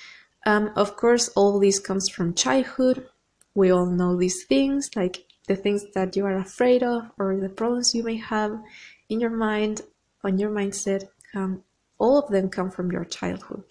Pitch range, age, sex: 195-230 Hz, 20-39, female